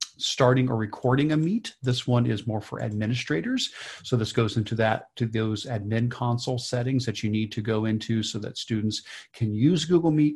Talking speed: 195 wpm